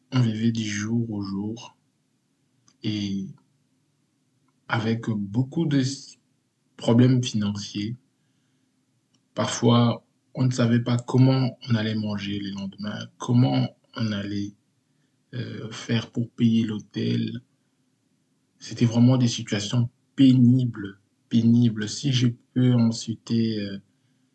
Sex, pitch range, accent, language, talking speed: male, 105-130 Hz, French, French, 100 wpm